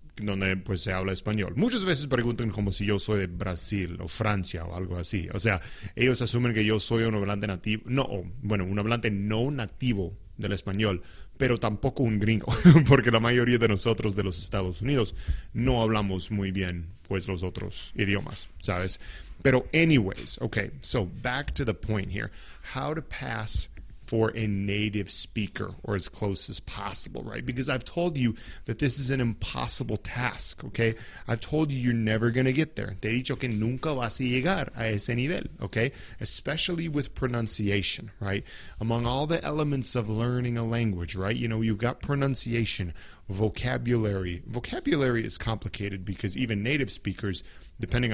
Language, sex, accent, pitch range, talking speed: English, male, Mexican, 95-120 Hz, 175 wpm